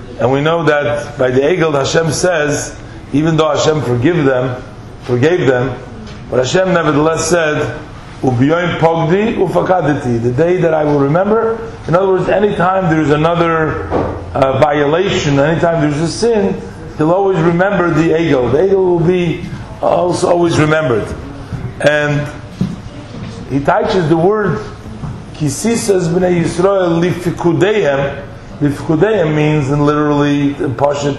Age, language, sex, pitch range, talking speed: 50-69, English, male, 135-175 Hz, 130 wpm